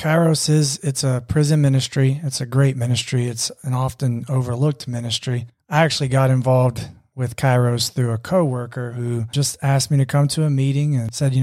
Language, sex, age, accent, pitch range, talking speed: English, male, 30-49, American, 125-145 Hz, 185 wpm